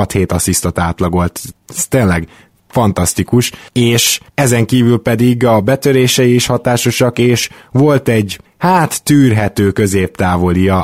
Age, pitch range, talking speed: 20-39, 95-115 Hz, 110 wpm